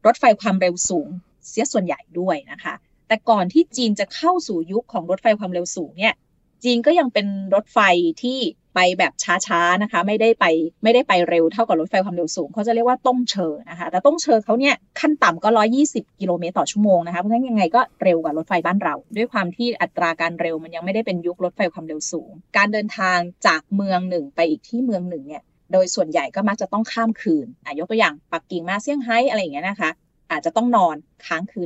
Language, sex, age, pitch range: Thai, female, 20-39, 175-235 Hz